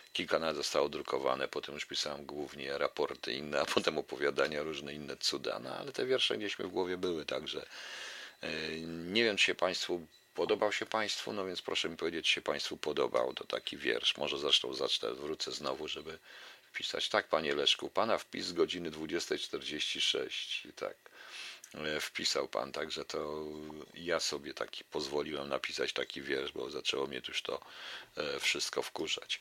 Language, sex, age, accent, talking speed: Polish, male, 50-69, native, 165 wpm